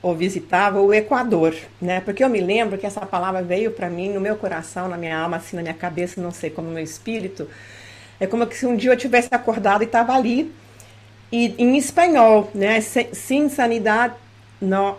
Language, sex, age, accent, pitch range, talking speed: Portuguese, female, 50-69, Brazilian, 180-260 Hz, 195 wpm